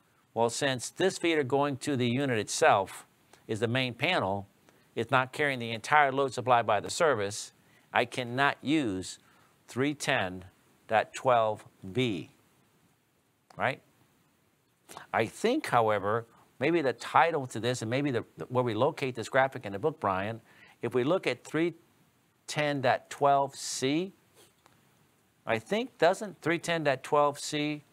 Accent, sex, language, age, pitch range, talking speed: American, male, English, 50-69, 120-150 Hz, 120 wpm